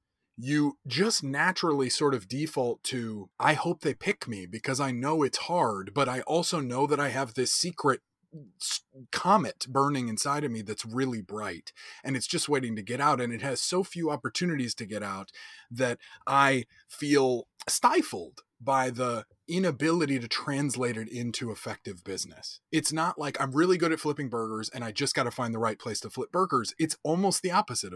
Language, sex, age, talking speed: English, male, 30-49, 190 wpm